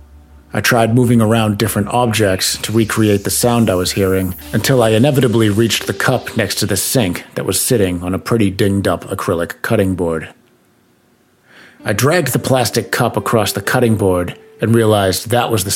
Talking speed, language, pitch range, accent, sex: 180 wpm, English, 95-120 Hz, American, male